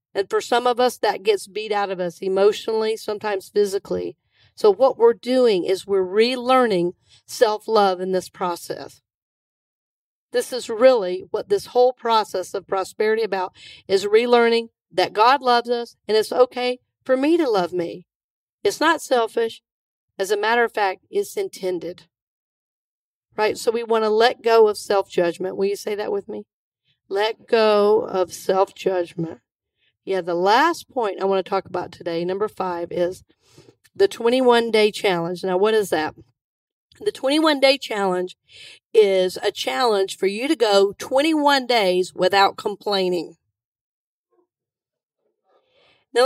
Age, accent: 50-69, American